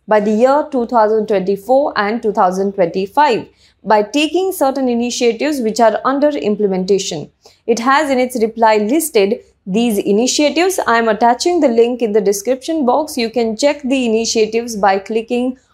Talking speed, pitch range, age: 140 wpm, 225-300 Hz, 20-39